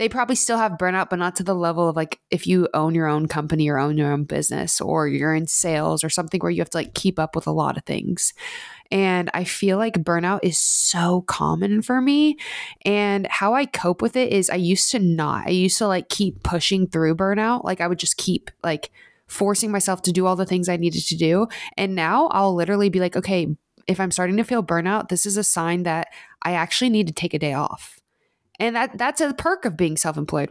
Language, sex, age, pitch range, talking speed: English, female, 20-39, 170-205 Hz, 240 wpm